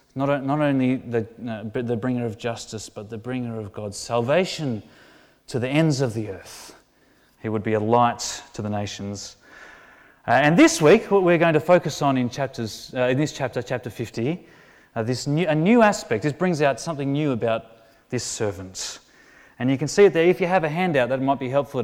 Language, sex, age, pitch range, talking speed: English, male, 30-49, 115-150 Hz, 210 wpm